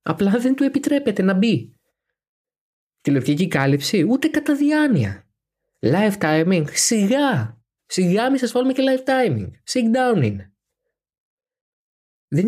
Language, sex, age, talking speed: Greek, male, 20-39, 115 wpm